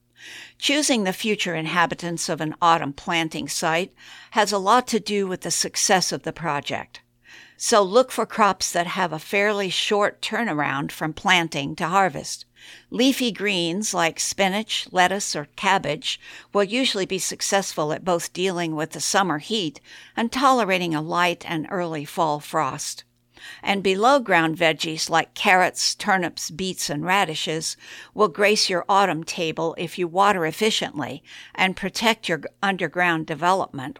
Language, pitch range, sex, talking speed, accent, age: English, 160-200 Hz, female, 145 wpm, American, 60-79